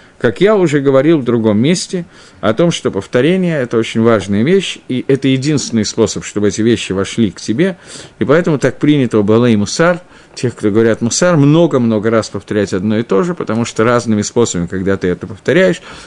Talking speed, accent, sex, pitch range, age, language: 185 wpm, native, male, 110-170 Hz, 50-69, Russian